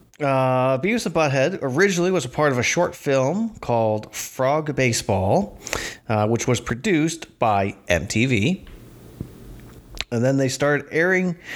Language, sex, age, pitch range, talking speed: English, male, 30-49, 110-145 Hz, 135 wpm